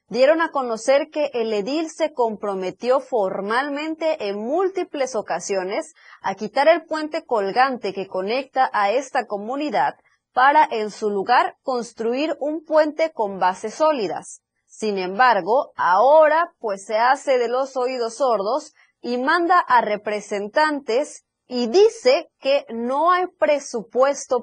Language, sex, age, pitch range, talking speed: Spanish, female, 30-49, 205-285 Hz, 130 wpm